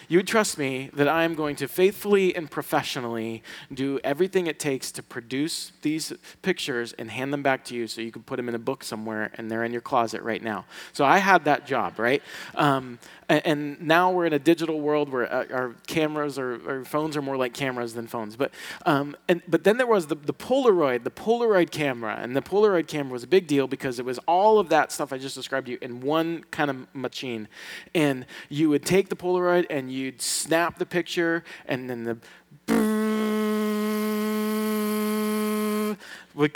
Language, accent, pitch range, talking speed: English, American, 130-180 Hz, 195 wpm